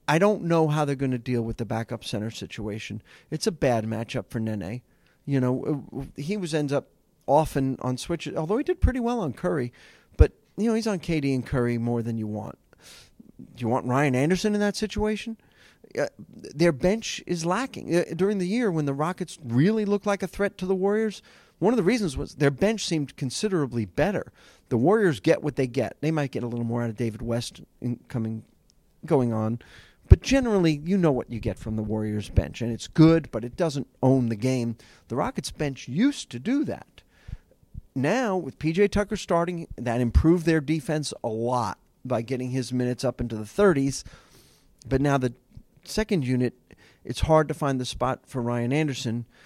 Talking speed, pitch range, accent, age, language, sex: 200 wpm, 120-175 Hz, American, 40-59, English, male